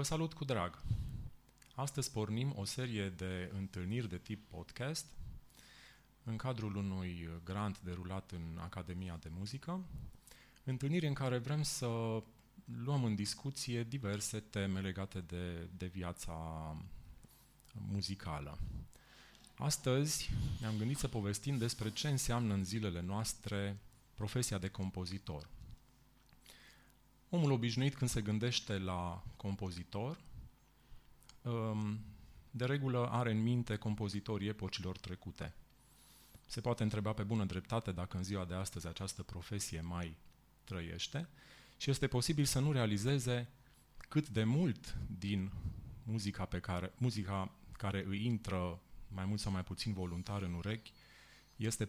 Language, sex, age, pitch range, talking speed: Romanian, male, 30-49, 95-125 Hz, 125 wpm